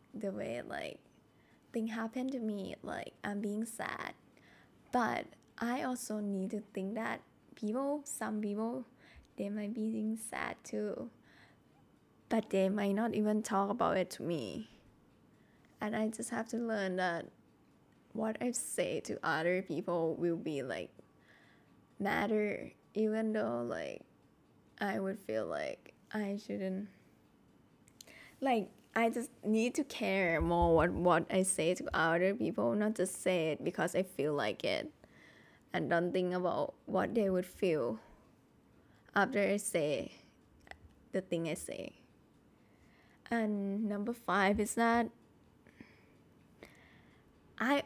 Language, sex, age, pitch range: Thai, female, 10-29, 190-225 Hz